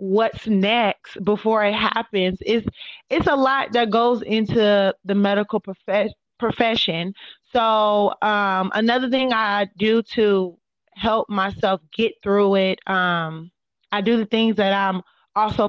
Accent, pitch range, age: American, 205-250 Hz, 20-39